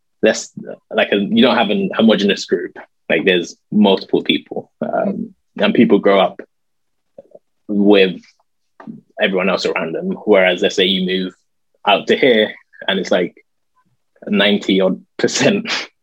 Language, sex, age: English, male, 20-39